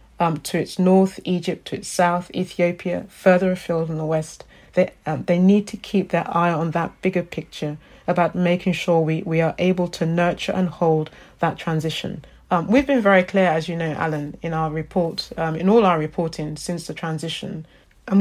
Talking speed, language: 200 wpm, English